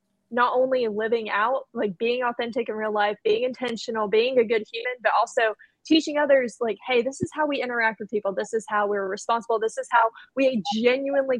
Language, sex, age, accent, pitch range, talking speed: English, female, 20-39, American, 215-255 Hz, 205 wpm